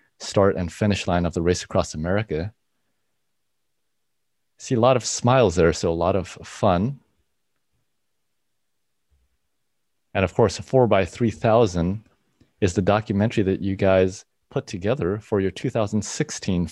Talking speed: 125 wpm